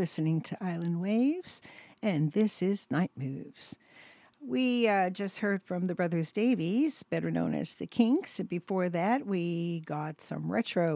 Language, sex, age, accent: Japanese, female, 50-69, American